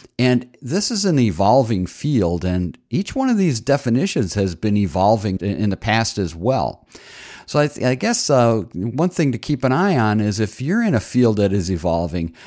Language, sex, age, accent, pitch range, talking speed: English, male, 50-69, American, 95-125 Hz, 195 wpm